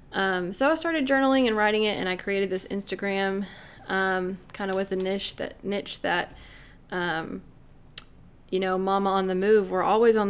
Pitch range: 180-205 Hz